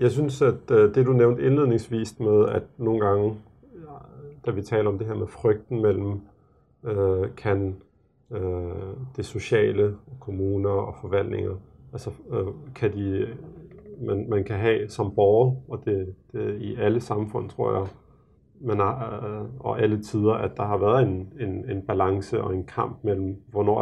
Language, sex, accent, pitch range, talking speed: Danish, male, native, 100-120 Hz, 165 wpm